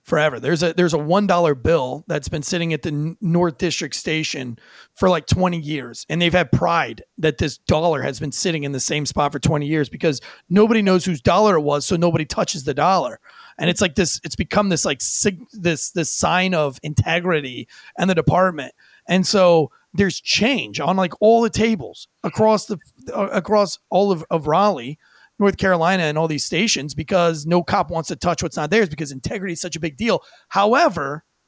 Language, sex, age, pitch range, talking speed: English, male, 30-49, 155-205 Hz, 200 wpm